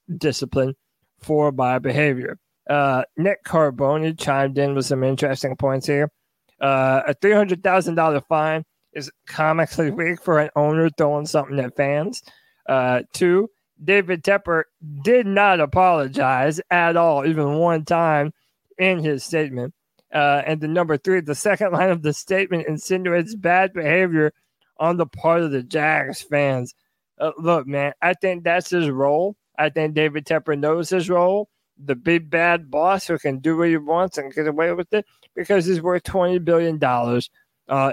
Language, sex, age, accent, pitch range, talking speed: English, male, 20-39, American, 145-175 Hz, 155 wpm